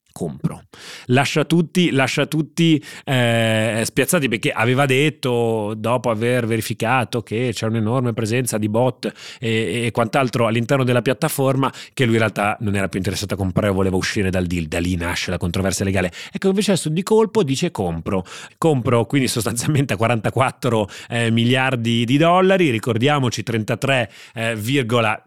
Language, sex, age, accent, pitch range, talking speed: Italian, male, 30-49, native, 100-125 Hz, 150 wpm